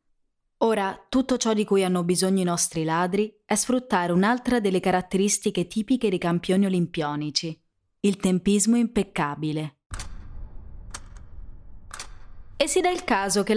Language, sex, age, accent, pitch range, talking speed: Italian, female, 20-39, native, 165-220 Hz, 125 wpm